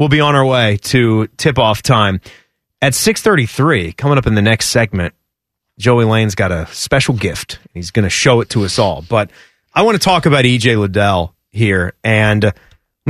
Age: 30-49